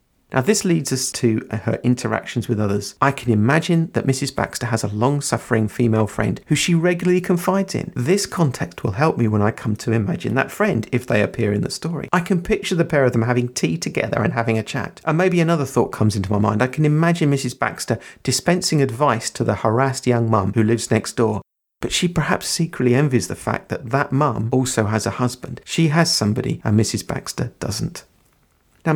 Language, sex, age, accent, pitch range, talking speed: English, male, 50-69, British, 115-160 Hz, 215 wpm